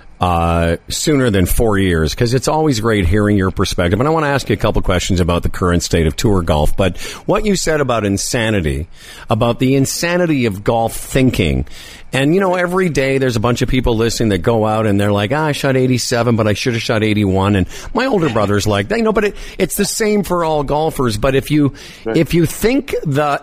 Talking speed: 230 wpm